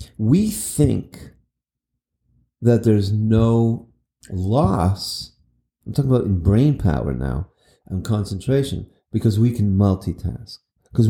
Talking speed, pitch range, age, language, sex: 110 wpm, 100-130 Hz, 40-59, English, male